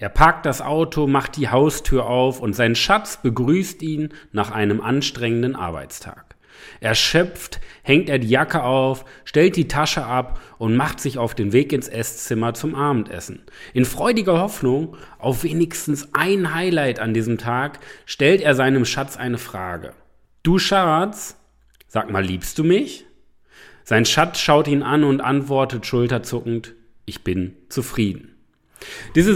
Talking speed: 145 wpm